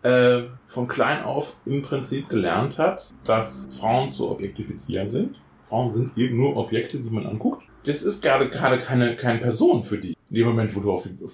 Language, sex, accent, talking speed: German, male, German, 195 wpm